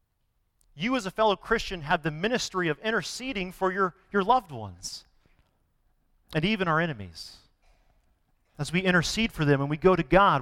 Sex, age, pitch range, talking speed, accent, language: male, 40-59, 135-210 Hz, 165 wpm, American, English